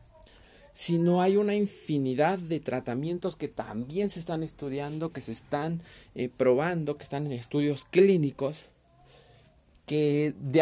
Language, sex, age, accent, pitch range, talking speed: Spanish, male, 40-59, Mexican, 115-170 Hz, 130 wpm